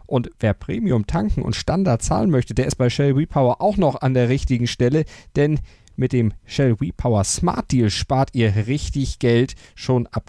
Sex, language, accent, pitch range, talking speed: male, German, German, 120-145 Hz, 185 wpm